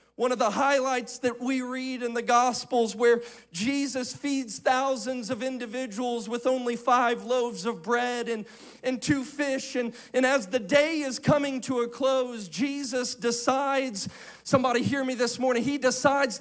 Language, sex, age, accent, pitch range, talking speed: English, male, 40-59, American, 250-300 Hz, 165 wpm